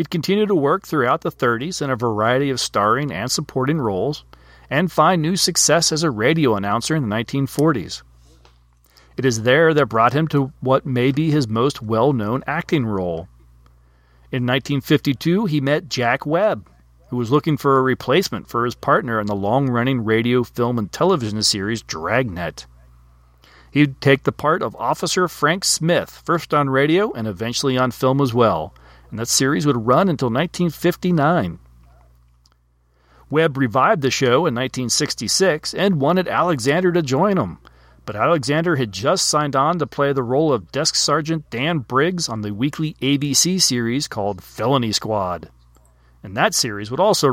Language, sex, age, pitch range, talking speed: English, male, 40-59, 100-155 Hz, 165 wpm